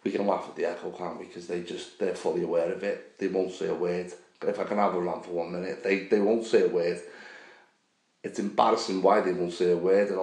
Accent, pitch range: British, 95-125 Hz